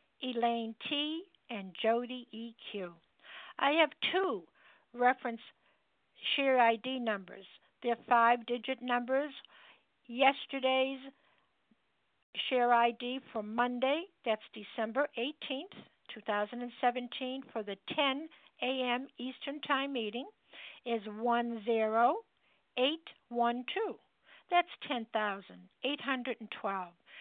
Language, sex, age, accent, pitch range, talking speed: English, female, 60-79, American, 225-285 Hz, 75 wpm